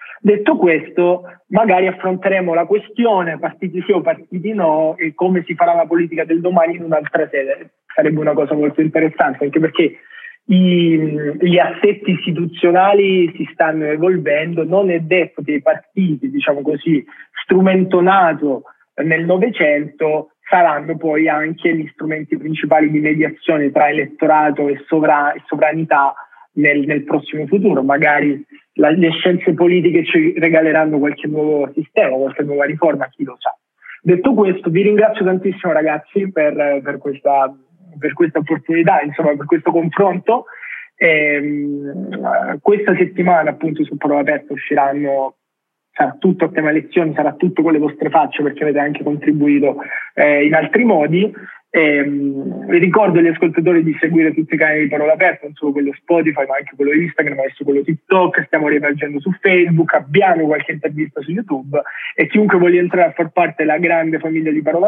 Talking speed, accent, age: 150 wpm, native, 30-49